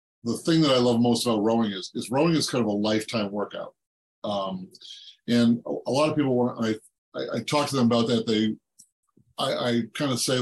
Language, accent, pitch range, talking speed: English, American, 105-125 Hz, 225 wpm